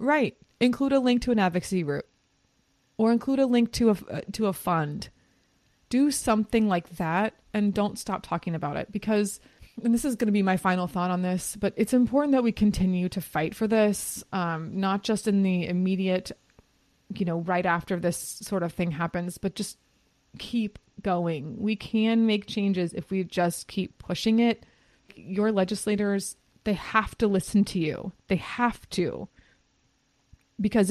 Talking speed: 175 wpm